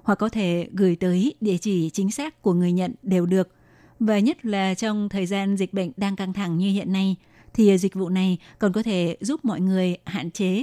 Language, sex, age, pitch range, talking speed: Vietnamese, female, 20-39, 185-220 Hz, 225 wpm